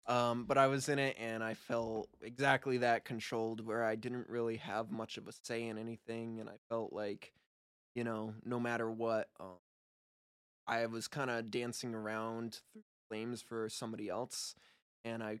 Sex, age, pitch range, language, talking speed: male, 20-39, 110-120 Hz, English, 180 wpm